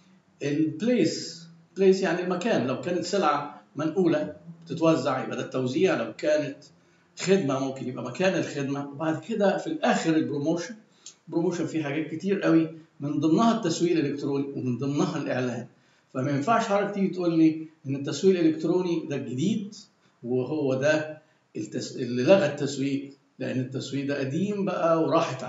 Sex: male